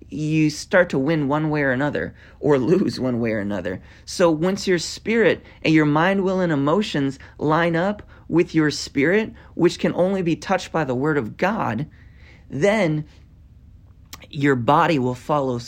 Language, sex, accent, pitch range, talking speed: English, male, American, 135-170 Hz, 170 wpm